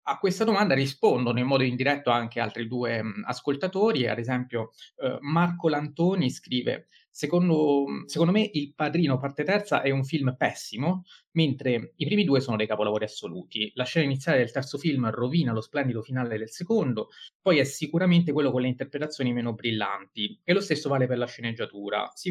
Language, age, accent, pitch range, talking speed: Italian, 30-49, native, 125-175 Hz, 180 wpm